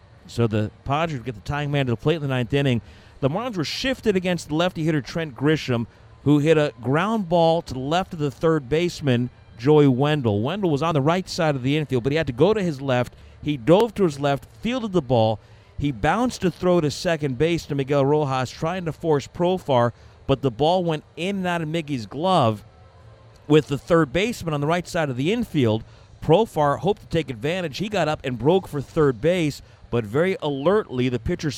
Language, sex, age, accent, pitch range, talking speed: English, male, 50-69, American, 125-170 Hz, 220 wpm